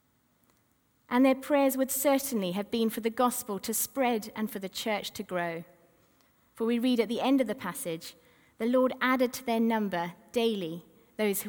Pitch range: 185-265 Hz